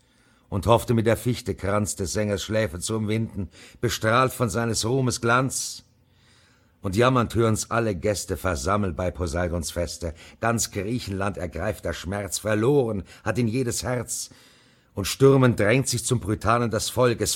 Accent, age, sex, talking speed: German, 50-69, male, 145 wpm